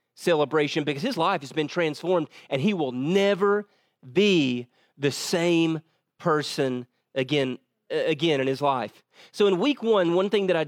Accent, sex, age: American, male, 40-59